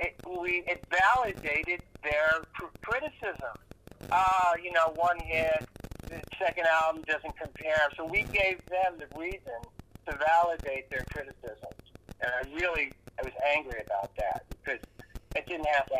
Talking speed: 150 wpm